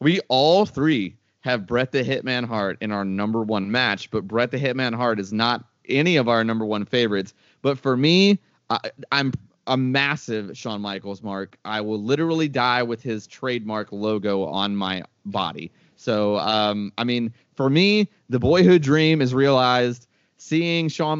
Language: English